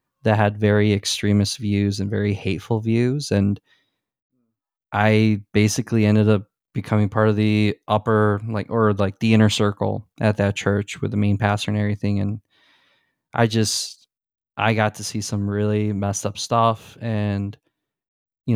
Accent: American